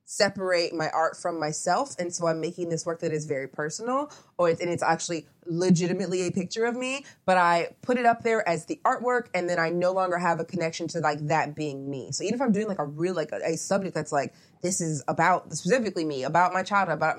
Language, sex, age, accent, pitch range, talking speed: English, female, 20-39, American, 155-190 Hz, 240 wpm